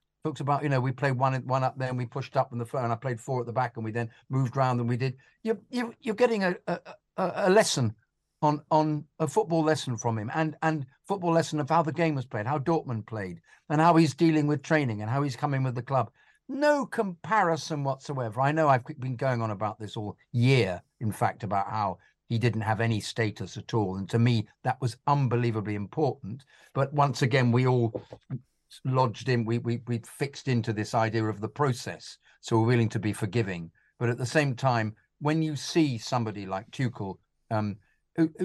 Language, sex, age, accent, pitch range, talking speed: English, male, 50-69, British, 115-155 Hz, 220 wpm